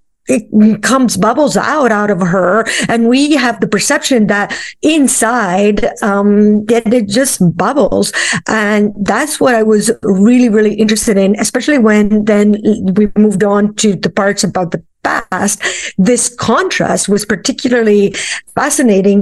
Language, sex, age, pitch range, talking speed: English, female, 50-69, 200-230 Hz, 140 wpm